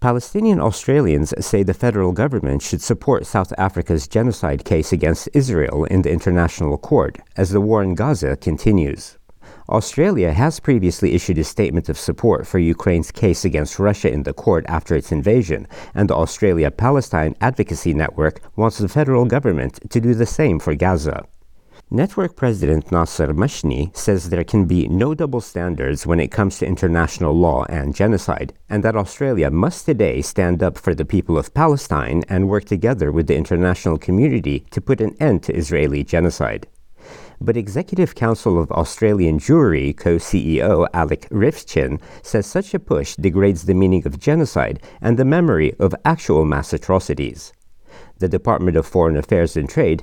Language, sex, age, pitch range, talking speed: English, male, 60-79, 80-110 Hz, 160 wpm